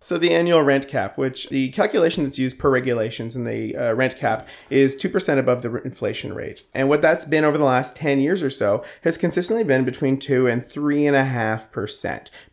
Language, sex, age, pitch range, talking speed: English, male, 30-49, 120-145 Hz, 200 wpm